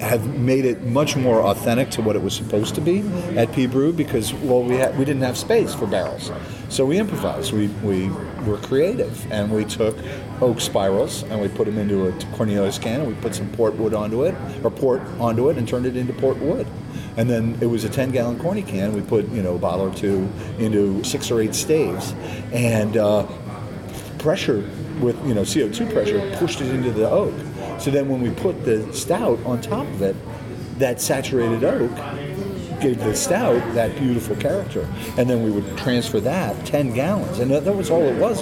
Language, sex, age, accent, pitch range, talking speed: English, male, 40-59, American, 105-130 Hz, 210 wpm